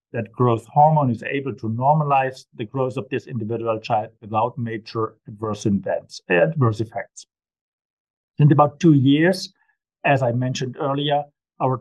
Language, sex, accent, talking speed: English, male, German, 140 wpm